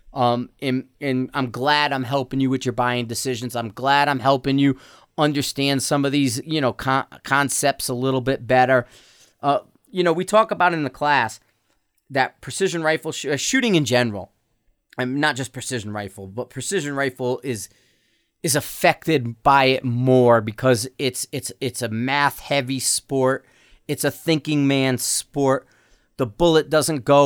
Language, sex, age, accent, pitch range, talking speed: English, male, 30-49, American, 125-145 Hz, 165 wpm